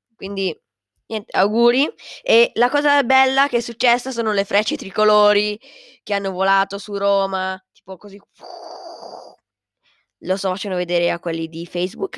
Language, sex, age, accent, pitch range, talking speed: Italian, female, 20-39, native, 190-250 Hz, 145 wpm